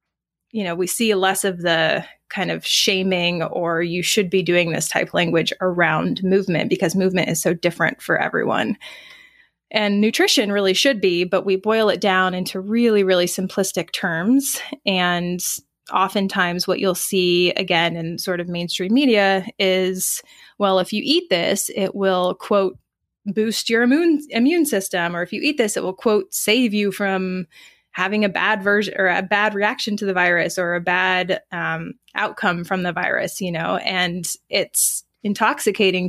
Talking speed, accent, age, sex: 170 wpm, American, 20-39, female